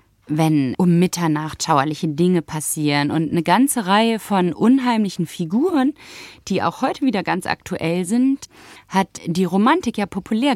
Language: German